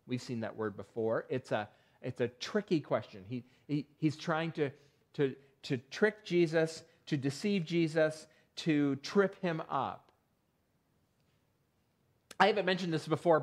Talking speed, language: 145 wpm, English